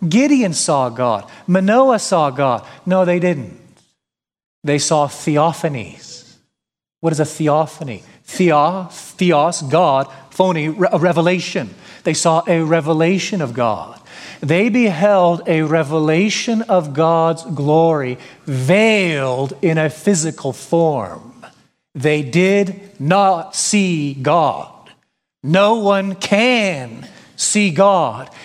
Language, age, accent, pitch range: English, 40-59, American, 150-190 Hz